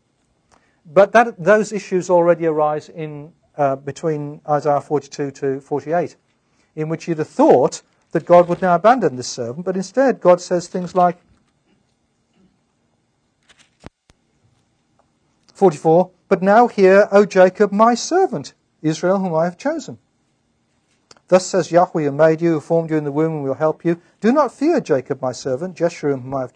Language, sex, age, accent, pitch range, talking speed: English, male, 50-69, British, 155-210 Hz, 160 wpm